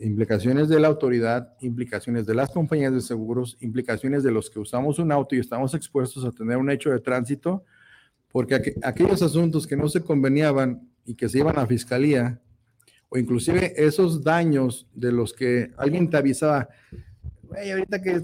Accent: Mexican